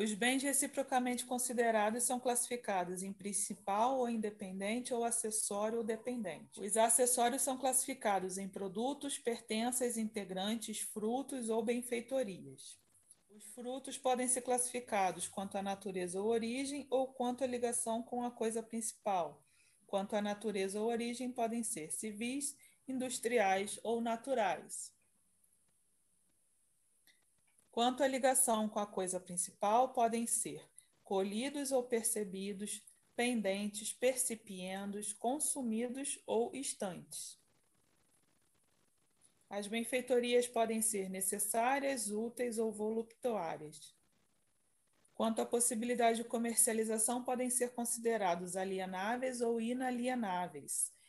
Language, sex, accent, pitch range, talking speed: Portuguese, female, Brazilian, 205-245 Hz, 105 wpm